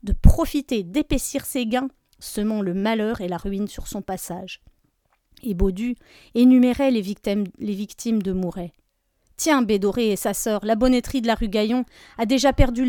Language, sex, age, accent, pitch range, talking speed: French, female, 30-49, French, 210-255 Hz, 170 wpm